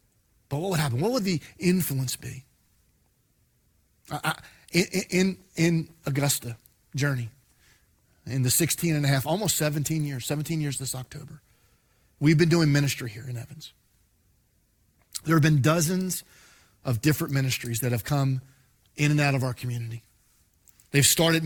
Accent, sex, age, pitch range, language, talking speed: American, male, 40-59, 125-165 Hz, English, 150 wpm